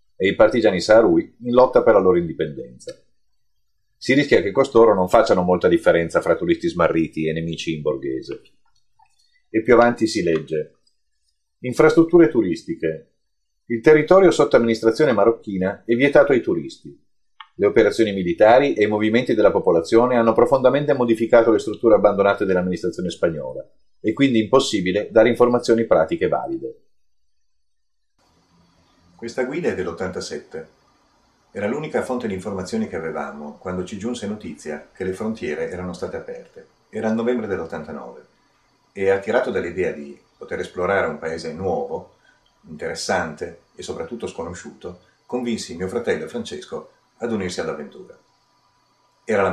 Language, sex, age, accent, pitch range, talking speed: Italian, male, 40-59, native, 90-150 Hz, 135 wpm